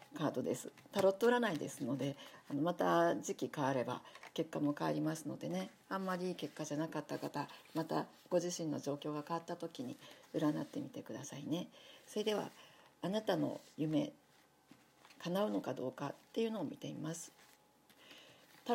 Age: 50-69